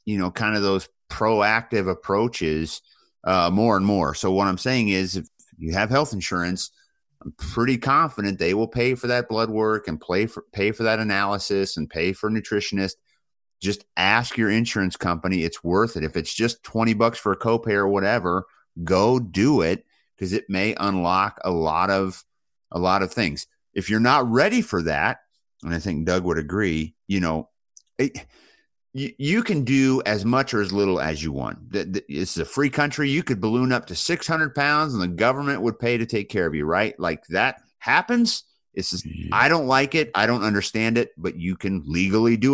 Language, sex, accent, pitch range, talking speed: English, male, American, 95-125 Hz, 195 wpm